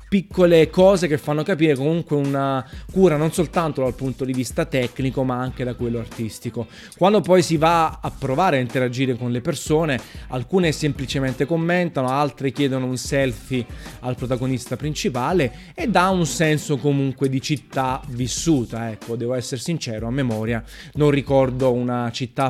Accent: native